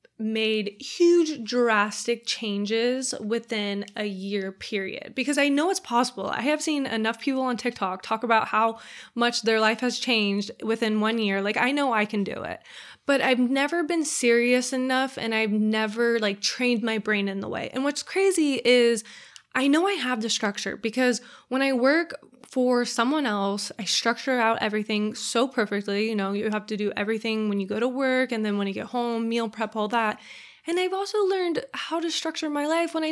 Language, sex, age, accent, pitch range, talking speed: English, female, 20-39, American, 215-270 Hz, 200 wpm